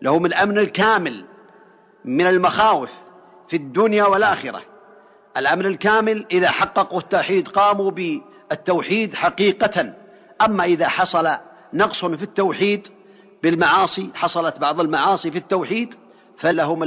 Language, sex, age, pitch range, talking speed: Arabic, male, 50-69, 160-195 Hz, 105 wpm